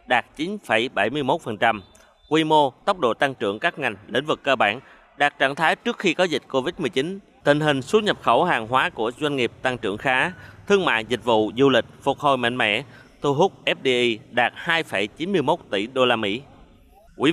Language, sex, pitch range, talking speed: Vietnamese, male, 120-150 Hz, 190 wpm